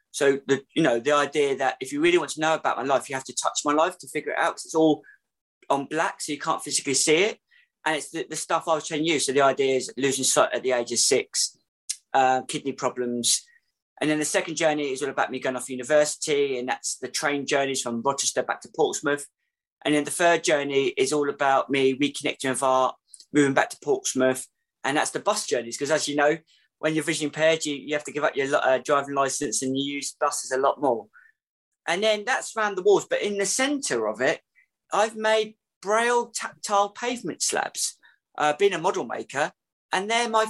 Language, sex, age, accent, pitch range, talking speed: English, male, 20-39, British, 135-205 Hz, 230 wpm